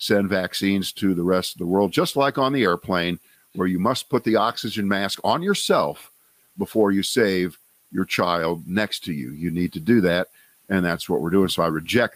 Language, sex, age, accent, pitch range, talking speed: English, male, 50-69, American, 90-120 Hz, 210 wpm